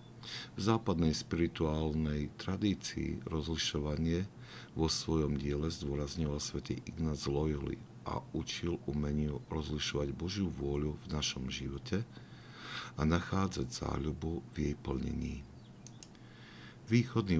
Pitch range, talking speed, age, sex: 70-85 Hz, 95 wpm, 50-69, male